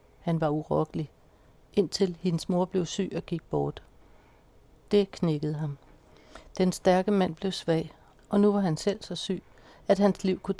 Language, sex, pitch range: Danish, female, 160-195 Hz